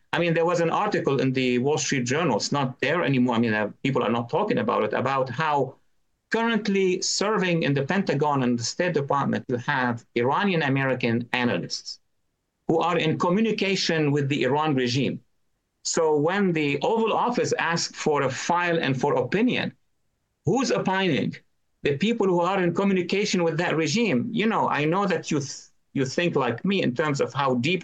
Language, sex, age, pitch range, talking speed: English, male, 50-69, 130-185 Hz, 185 wpm